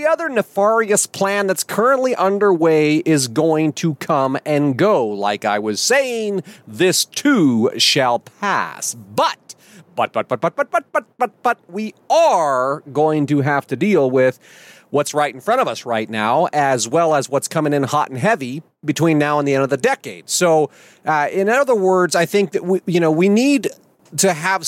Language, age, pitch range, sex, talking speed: English, 30-49, 140-190 Hz, male, 190 wpm